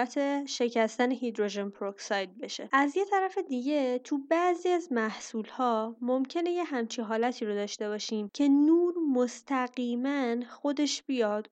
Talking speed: 125 wpm